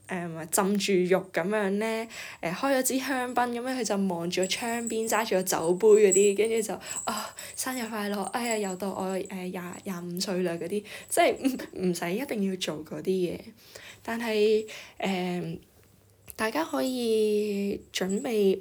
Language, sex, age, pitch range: Chinese, female, 10-29, 185-230 Hz